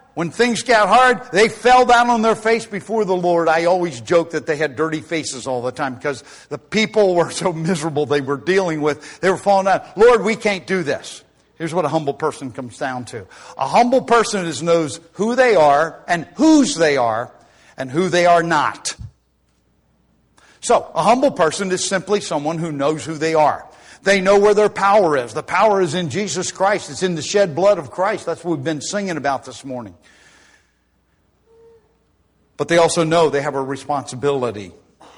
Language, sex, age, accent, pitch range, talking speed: English, male, 60-79, American, 140-190 Hz, 195 wpm